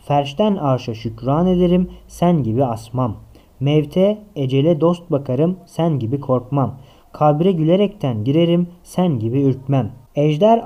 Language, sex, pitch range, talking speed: Turkish, male, 125-170 Hz, 120 wpm